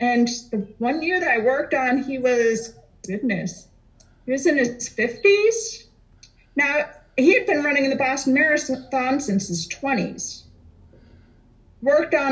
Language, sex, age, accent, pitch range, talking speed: English, female, 40-59, American, 215-275 Hz, 145 wpm